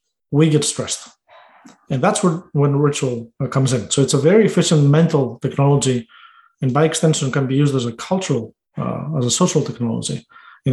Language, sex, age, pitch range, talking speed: English, male, 30-49, 135-160 Hz, 180 wpm